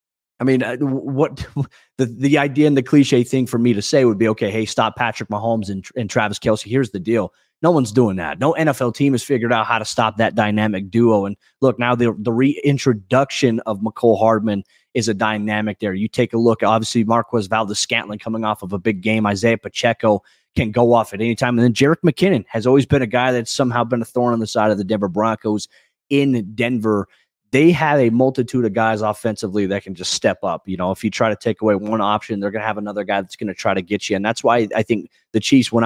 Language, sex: English, male